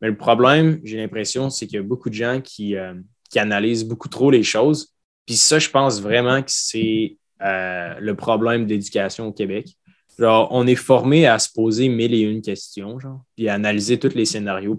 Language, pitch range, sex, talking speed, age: French, 105-130 Hz, male, 200 wpm, 20-39